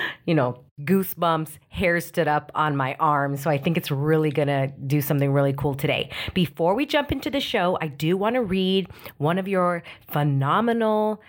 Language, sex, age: English, female, 40-59